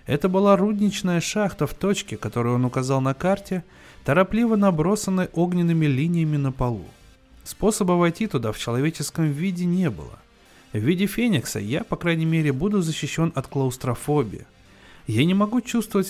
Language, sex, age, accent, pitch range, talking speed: Russian, male, 20-39, native, 125-185 Hz, 150 wpm